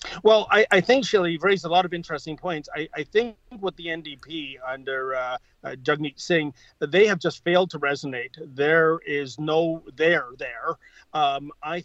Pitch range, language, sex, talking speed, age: 150-210 Hz, English, male, 180 wpm, 40-59